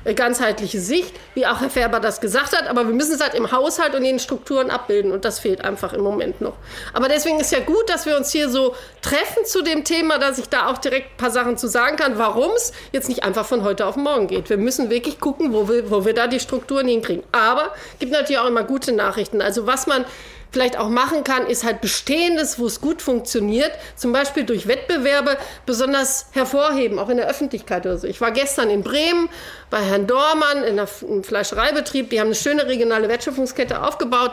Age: 40-59